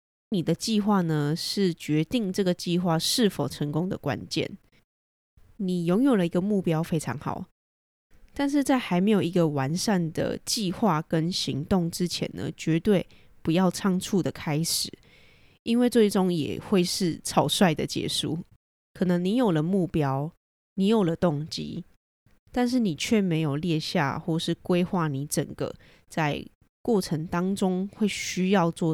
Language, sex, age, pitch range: Chinese, female, 20-39, 160-195 Hz